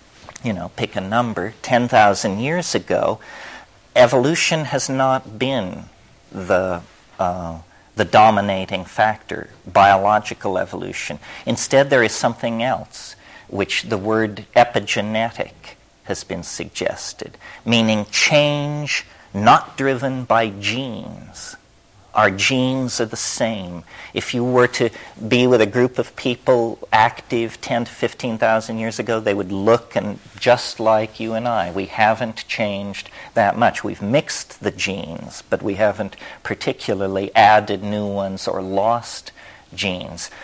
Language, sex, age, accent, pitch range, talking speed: English, male, 50-69, American, 105-130 Hz, 130 wpm